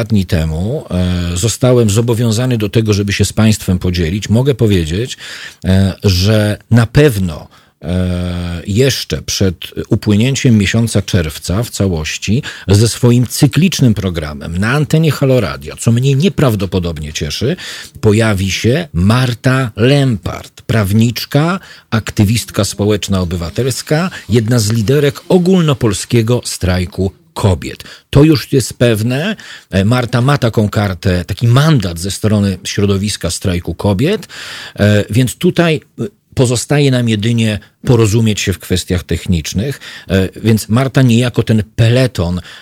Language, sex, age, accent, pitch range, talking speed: Polish, male, 40-59, native, 95-125 Hz, 110 wpm